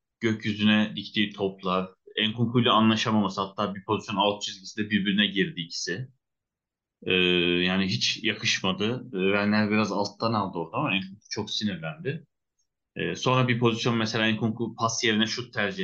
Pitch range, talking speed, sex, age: 95-115 Hz, 145 wpm, male, 30-49